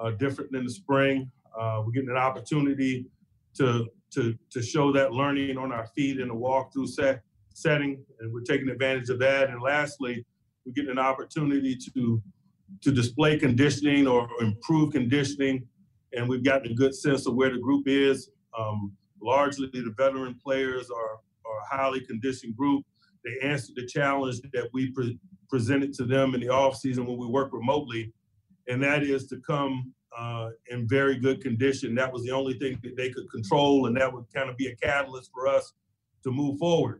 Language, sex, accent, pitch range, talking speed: English, male, American, 120-140 Hz, 185 wpm